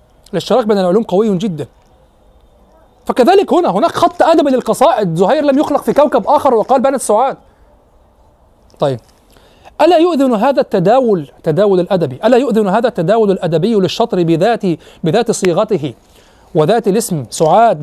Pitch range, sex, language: 210-270 Hz, male, Arabic